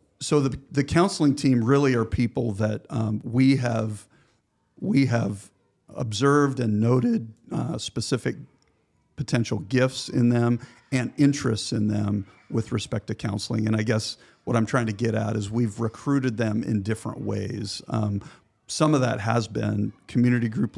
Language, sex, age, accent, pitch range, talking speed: English, male, 50-69, American, 110-130 Hz, 160 wpm